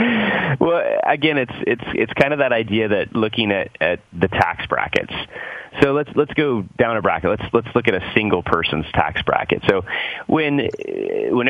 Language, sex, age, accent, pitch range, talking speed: English, male, 30-49, American, 90-115 Hz, 185 wpm